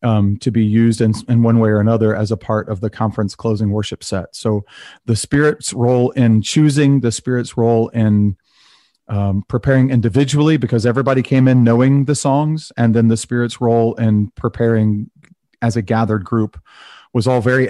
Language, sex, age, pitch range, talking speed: English, male, 30-49, 110-130 Hz, 180 wpm